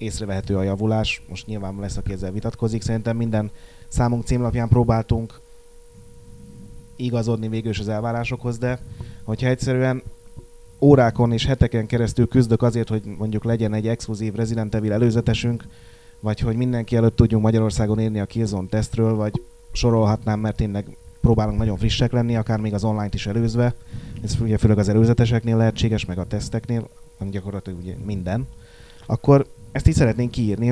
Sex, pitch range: male, 110-120 Hz